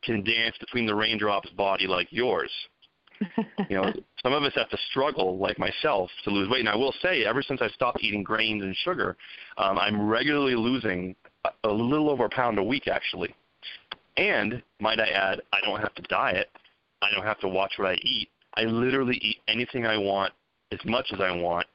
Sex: male